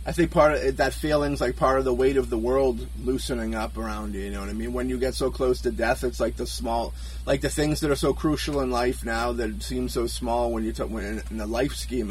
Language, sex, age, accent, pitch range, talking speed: English, male, 30-49, American, 100-145 Hz, 285 wpm